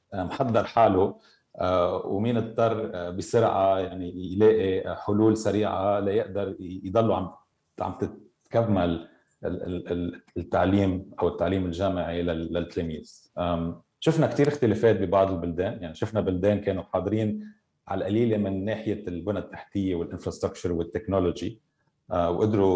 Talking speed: 100 wpm